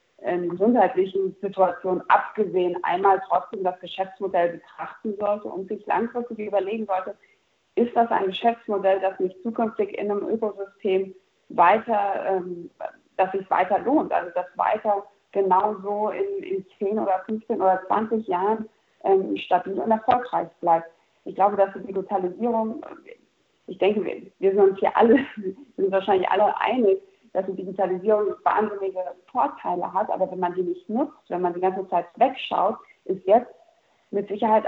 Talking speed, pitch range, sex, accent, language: 145 wpm, 185-225 Hz, female, German, German